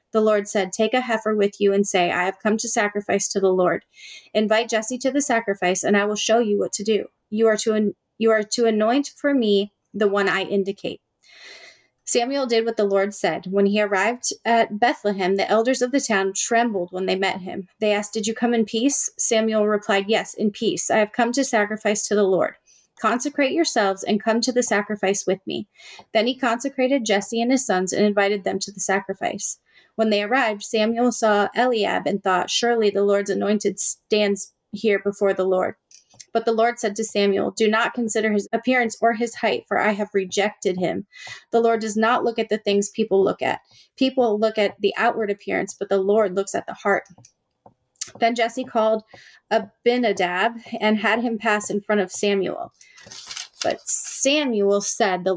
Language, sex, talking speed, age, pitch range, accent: English, female, 200 wpm, 30-49, 200-230 Hz, American